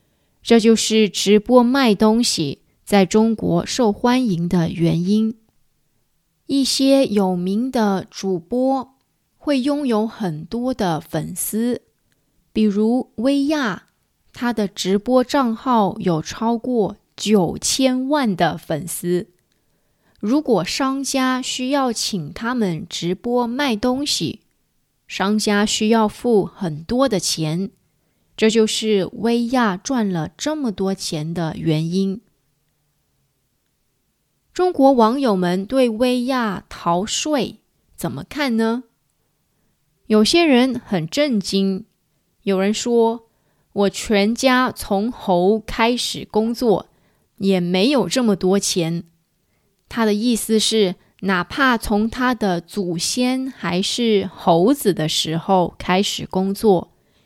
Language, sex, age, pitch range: English, female, 20-39, 185-245 Hz